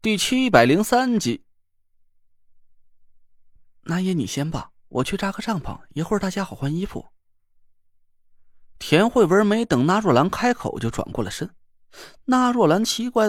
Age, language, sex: 30-49, Chinese, male